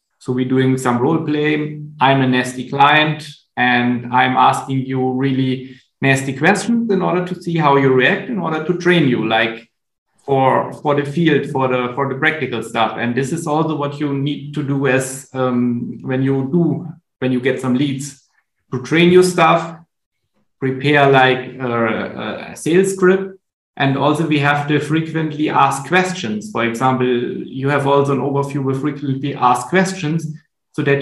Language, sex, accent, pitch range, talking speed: Romanian, male, German, 130-160 Hz, 175 wpm